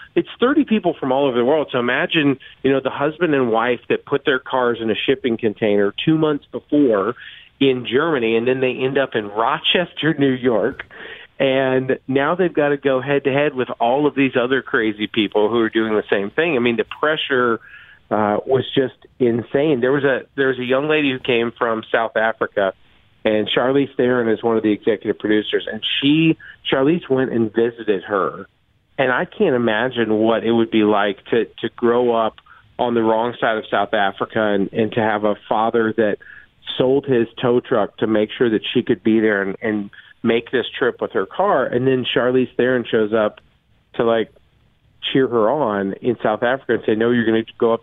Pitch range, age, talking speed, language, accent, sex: 110-135 Hz, 40-59, 210 wpm, English, American, male